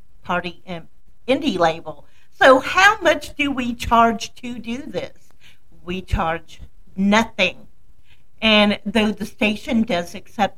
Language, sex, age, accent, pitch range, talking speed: English, female, 50-69, American, 205-250 Hz, 120 wpm